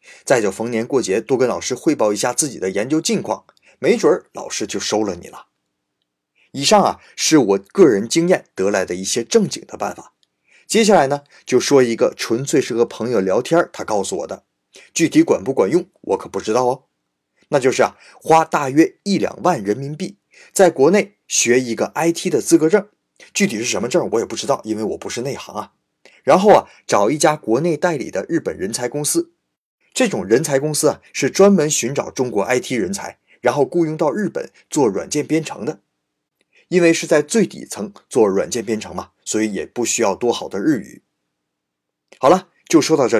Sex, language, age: male, Chinese, 30-49